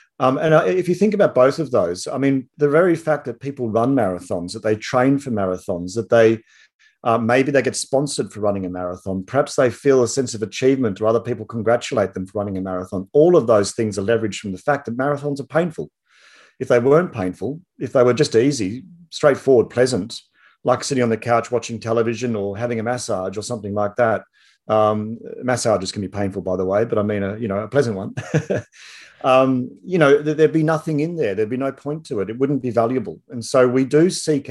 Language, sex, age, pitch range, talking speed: English, male, 40-59, 110-140 Hz, 225 wpm